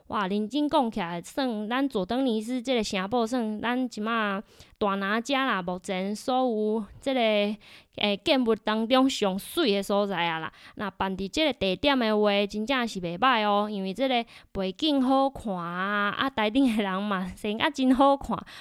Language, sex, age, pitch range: Chinese, female, 20-39, 195-255 Hz